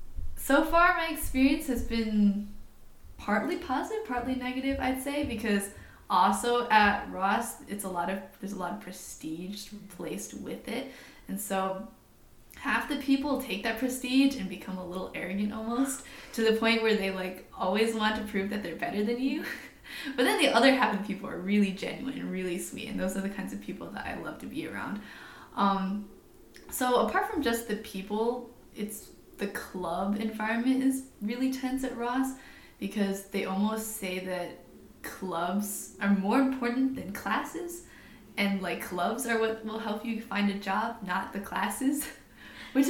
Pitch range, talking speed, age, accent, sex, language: 200-260 Hz, 175 wpm, 10-29, American, female, English